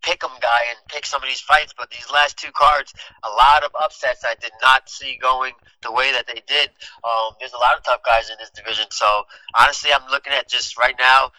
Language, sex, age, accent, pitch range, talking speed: English, male, 30-49, American, 115-140 Hz, 240 wpm